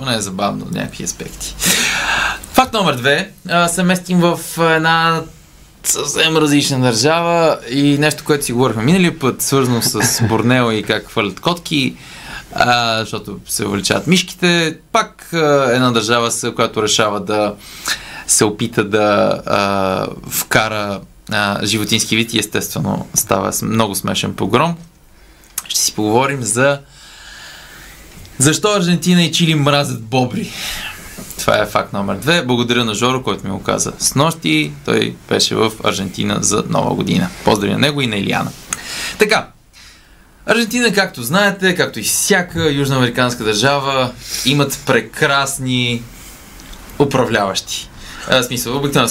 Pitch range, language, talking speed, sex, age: 110-160 Hz, Bulgarian, 125 wpm, male, 20-39